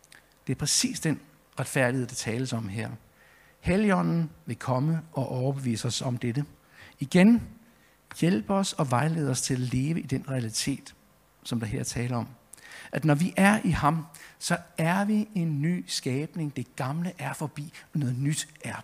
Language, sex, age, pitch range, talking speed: Danish, male, 60-79, 125-165 Hz, 170 wpm